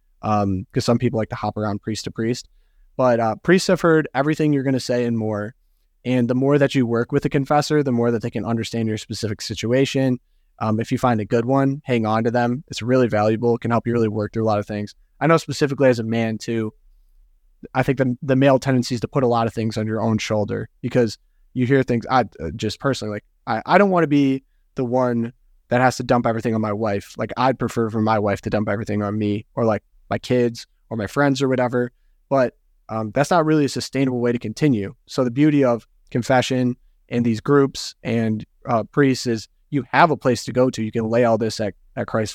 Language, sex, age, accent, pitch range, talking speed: English, male, 20-39, American, 105-130 Hz, 245 wpm